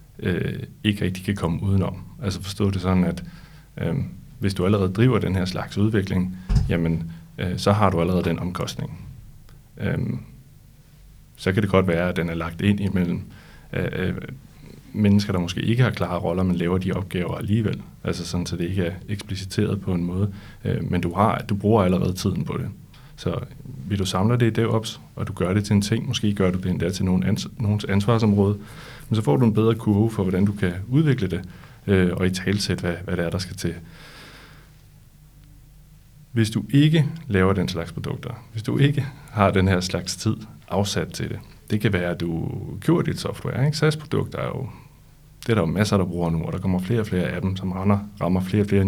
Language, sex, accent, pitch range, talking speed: Danish, male, native, 90-115 Hz, 210 wpm